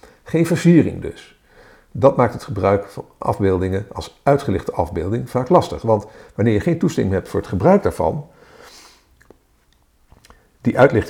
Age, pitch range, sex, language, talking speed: 50-69, 100-155 Hz, male, Dutch, 135 wpm